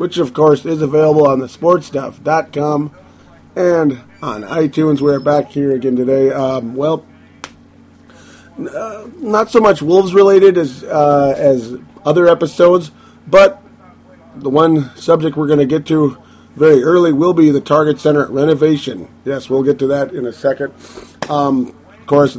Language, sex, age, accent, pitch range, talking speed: English, male, 30-49, American, 125-150 Hz, 155 wpm